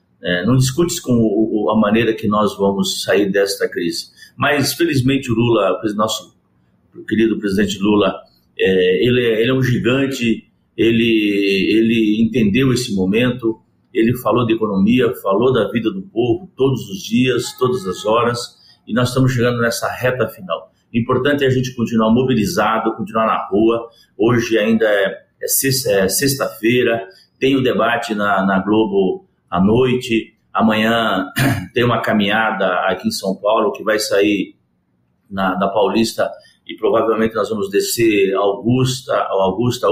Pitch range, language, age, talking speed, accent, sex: 105-130 Hz, Portuguese, 50-69, 160 wpm, Brazilian, male